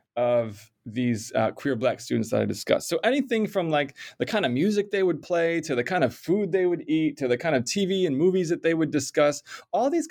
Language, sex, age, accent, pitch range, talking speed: English, male, 30-49, American, 130-180 Hz, 245 wpm